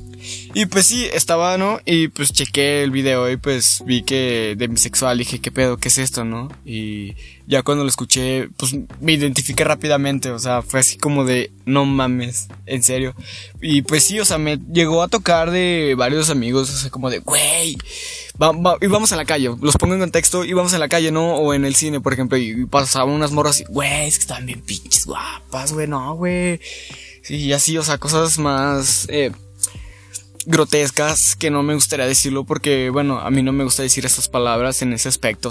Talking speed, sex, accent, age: 210 wpm, male, Mexican, 20-39